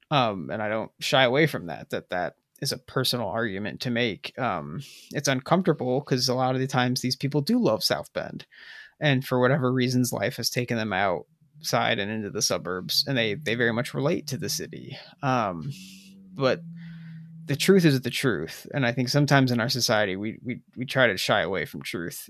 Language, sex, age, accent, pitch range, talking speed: English, male, 30-49, American, 120-150 Hz, 205 wpm